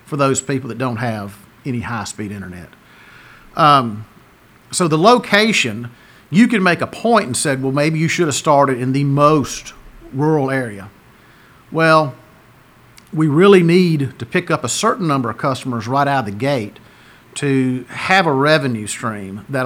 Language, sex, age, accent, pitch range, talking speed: English, male, 50-69, American, 120-155 Hz, 165 wpm